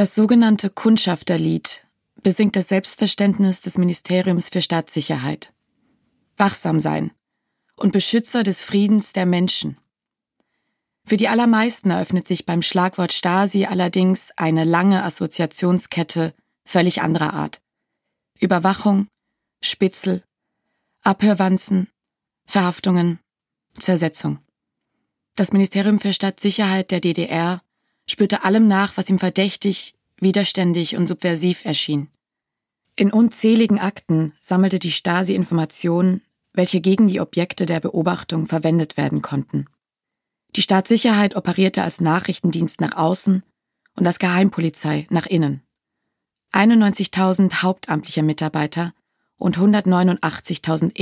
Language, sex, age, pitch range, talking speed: German, female, 20-39, 165-200 Hz, 100 wpm